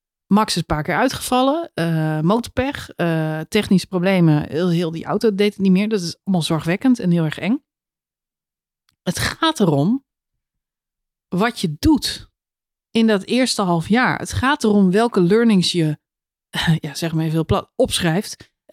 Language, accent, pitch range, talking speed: Dutch, Dutch, 170-235 Hz, 160 wpm